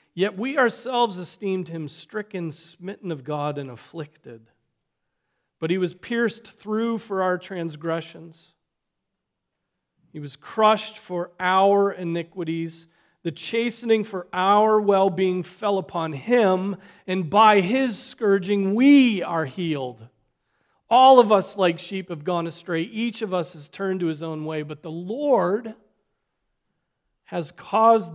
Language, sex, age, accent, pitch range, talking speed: English, male, 40-59, American, 165-210 Hz, 130 wpm